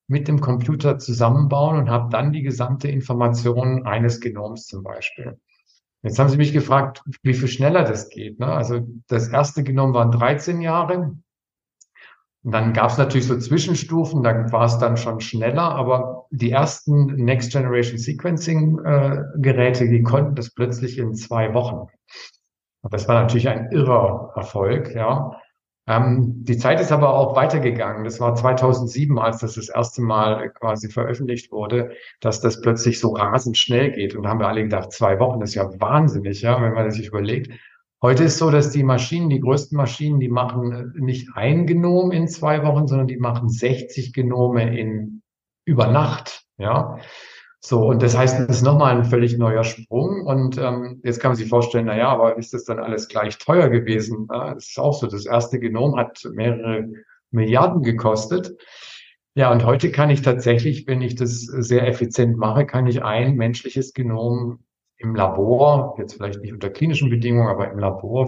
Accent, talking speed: German, 180 wpm